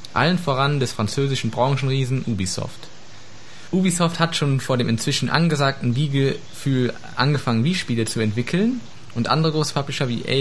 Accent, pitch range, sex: German, 115-145 Hz, male